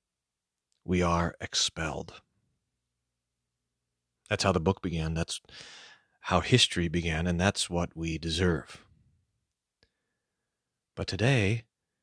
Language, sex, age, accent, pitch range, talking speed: English, male, 40-59, American, 80-105 Hz, 95 wpm